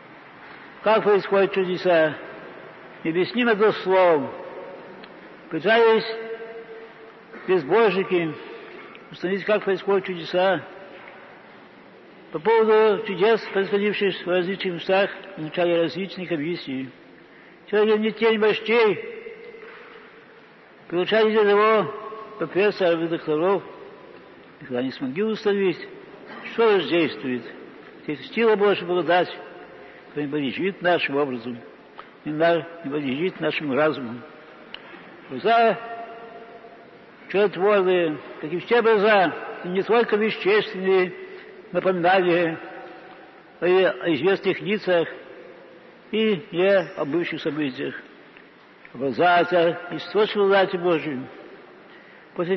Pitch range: 170-215 Hz